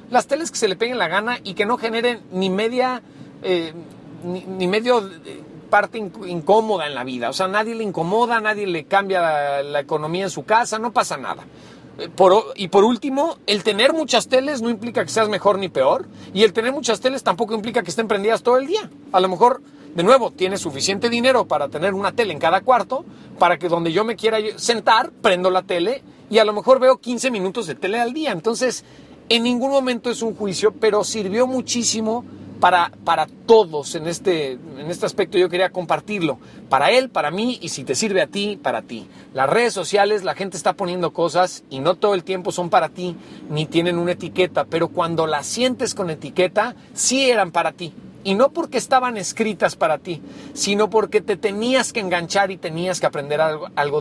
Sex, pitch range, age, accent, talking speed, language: male, 175-235 Hz, 40-59, Mexican, 210 wpm, Spanish